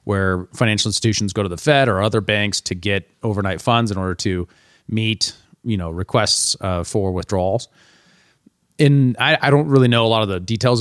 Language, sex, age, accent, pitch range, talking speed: English, male, 30-49, American, 100-125 Hz, 195 wpm